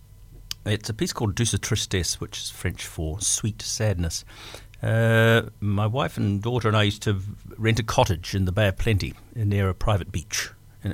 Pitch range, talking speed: 95-110 Hz, 190 wpm